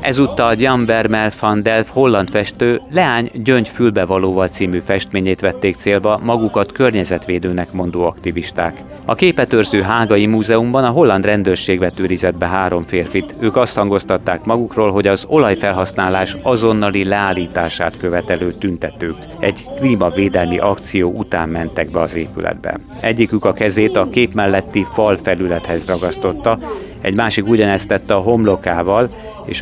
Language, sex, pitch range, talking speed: Hungarian, male, 90-115 Hz, 125 wpm